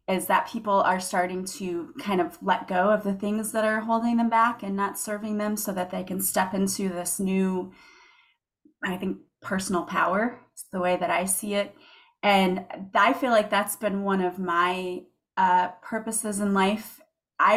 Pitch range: 190-230 Hz